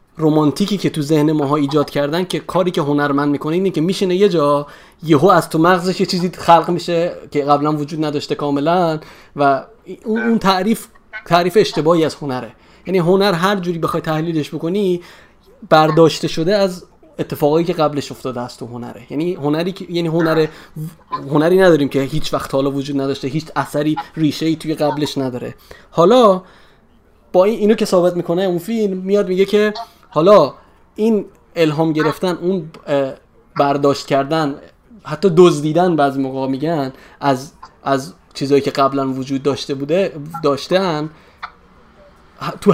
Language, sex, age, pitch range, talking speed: Persian, male, 30-49, 145-185 Hz, 150 wpm